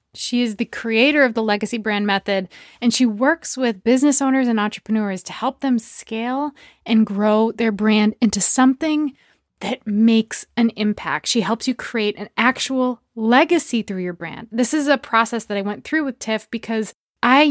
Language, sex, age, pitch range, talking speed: English, female, 20-39, 210-250 Hz, 180 wpm